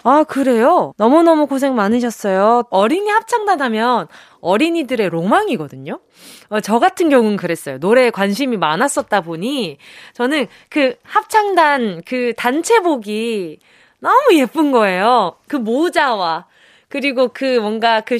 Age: 20-39